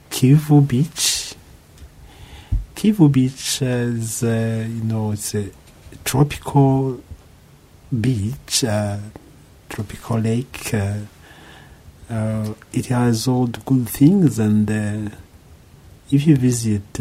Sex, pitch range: male, 100-130 Hz